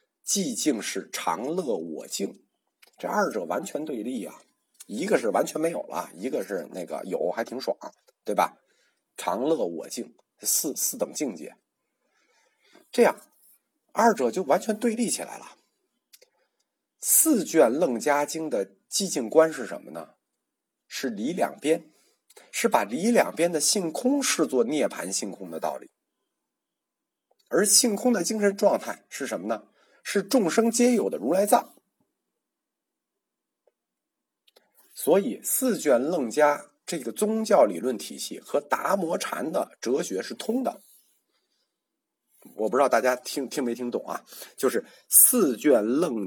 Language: Chinese